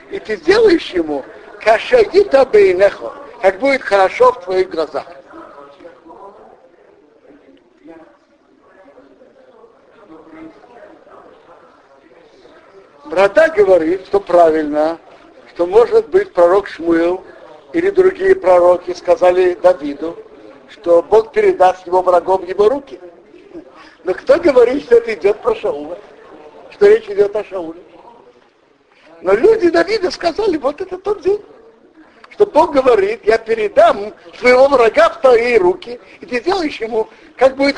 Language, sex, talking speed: Russian, male, 110 wpm